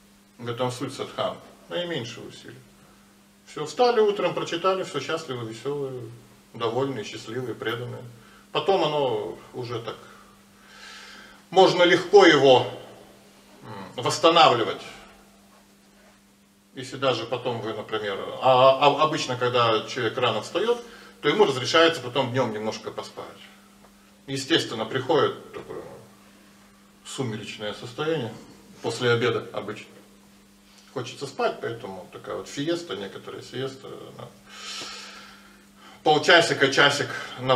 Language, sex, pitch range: Russian, male, 105-160 Hz